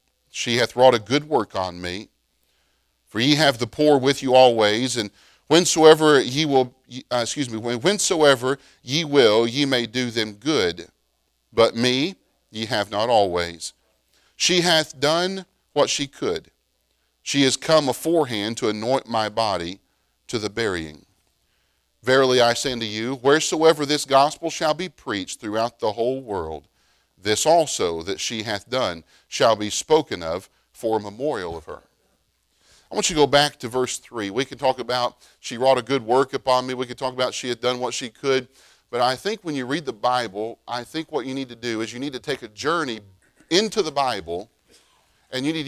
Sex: male